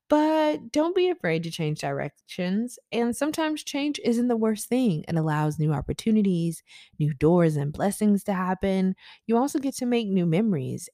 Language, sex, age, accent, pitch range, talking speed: English, female, 20-39, American, 160-220 Hz, 170 wpm